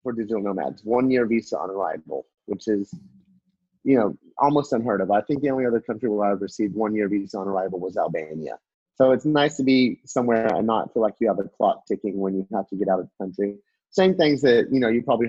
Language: English